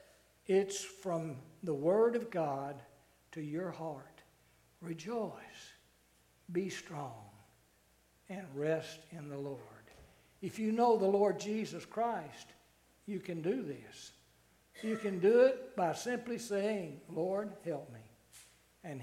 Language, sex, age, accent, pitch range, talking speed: English, male, 60-79, American, 140-195 Hz, 125 wpm